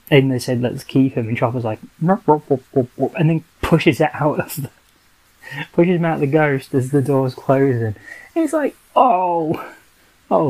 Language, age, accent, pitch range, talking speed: English, 20-39, British, 125-150 Hz, 150 wpm